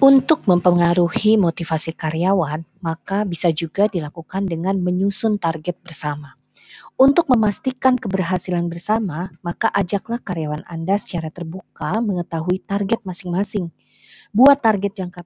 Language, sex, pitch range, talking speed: Indonesian, female, 165-220 Hz, 110 wpm